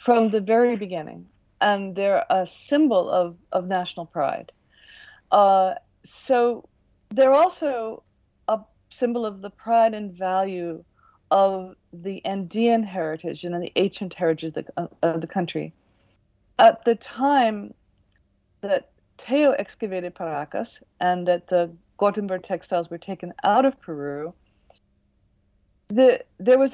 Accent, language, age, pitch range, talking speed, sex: American, English, 50-69, 170-240 Hz, 120 wpm, female